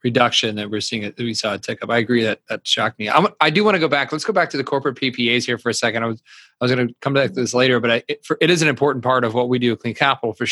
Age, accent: 30-49, American